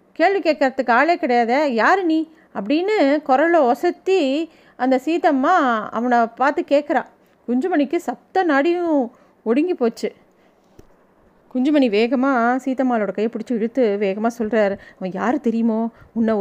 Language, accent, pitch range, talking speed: Tamil, native, 220-275 Hz, 110 wpm